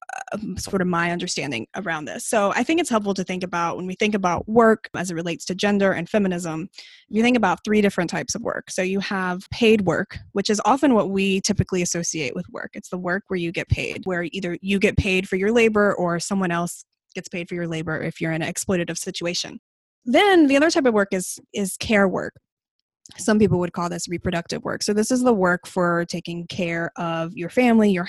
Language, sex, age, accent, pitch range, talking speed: English, female, 20-39, American, 175-215 Hz, 225 wpm